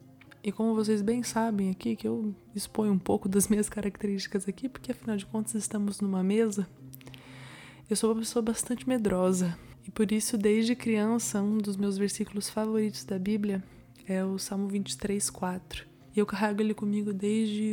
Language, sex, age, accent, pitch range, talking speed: Portuguese, female, 20-39, Brazilian, 190-215 Hz, 175 wpm